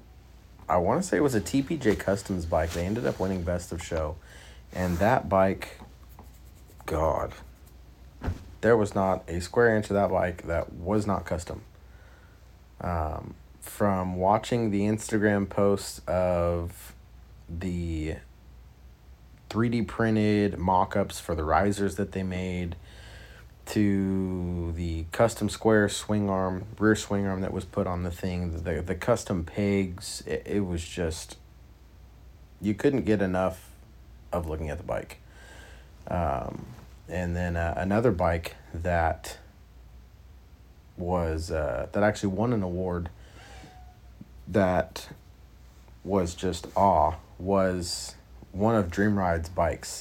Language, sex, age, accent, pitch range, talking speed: English, male, 30-49, American, 80-100 Hz, 130 wpm